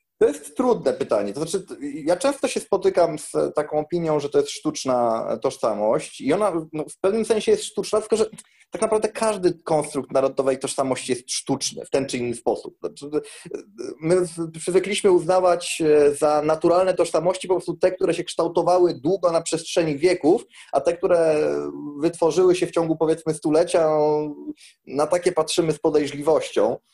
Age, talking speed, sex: 30-49, 160 wpm, male